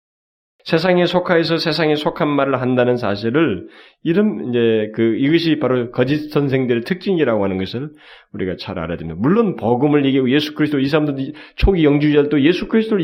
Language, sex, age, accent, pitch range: Korean, male, 30-49, native, 145-225 Hz